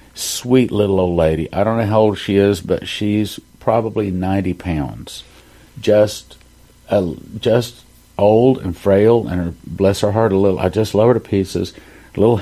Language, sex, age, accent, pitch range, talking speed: English, male, 50-69, American, 90-115 Hz, 175 wpm